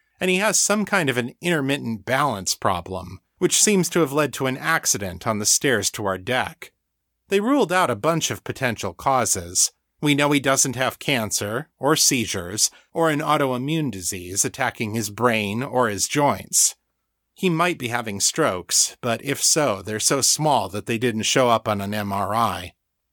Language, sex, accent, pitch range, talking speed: English, male, American, 105-145 Hz, 180 wpm